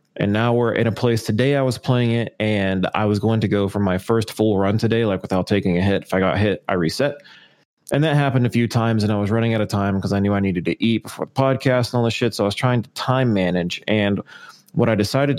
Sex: male